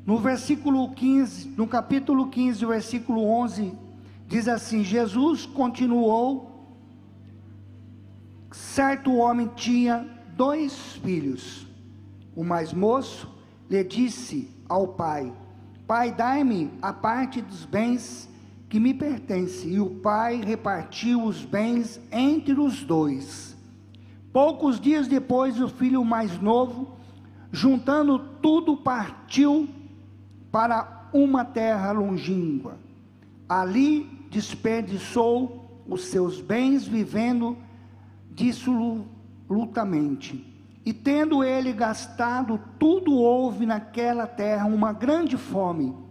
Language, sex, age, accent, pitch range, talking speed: Portuguese, male, 50-69, Brazilian, 165-255 Hz, 95 wpm